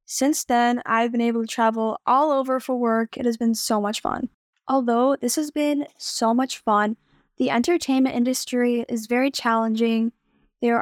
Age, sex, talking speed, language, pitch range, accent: 10-29, female, 170 wpm, English, 225-265 Hz, American